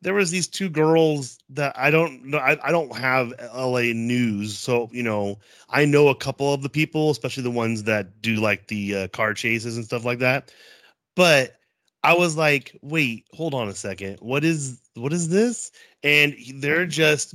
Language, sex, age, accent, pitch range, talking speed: English, male, 30-49, American, 115-145 Hz, 190 wpm